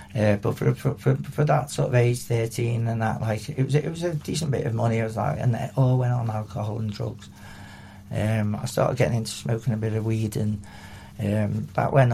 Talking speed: 235 wpm